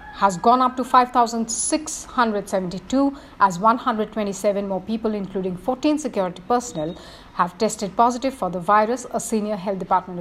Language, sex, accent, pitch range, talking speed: English, female, Indian, 205-260 Hz, 135 wpm